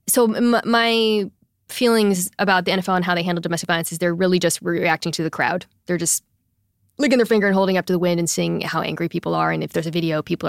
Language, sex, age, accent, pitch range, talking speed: English, female, 20-39, American, 170-200 Hz, 245 wpm